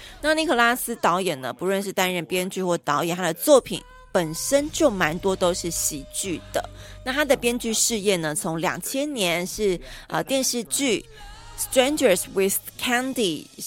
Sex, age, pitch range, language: female, 30-49, 170-230 Hz, Chinese